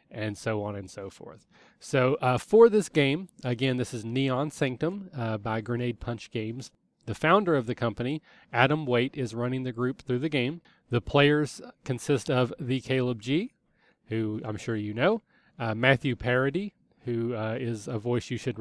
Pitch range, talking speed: 120-150 Hz, 185 wpm